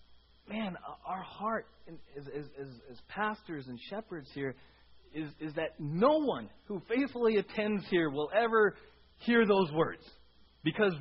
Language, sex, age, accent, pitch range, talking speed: English, male, 30-49, American, 125-170 Hz, 130 wpm